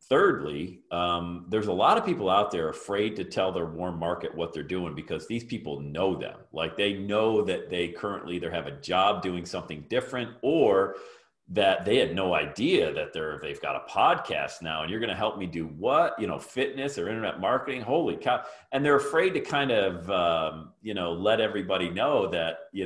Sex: male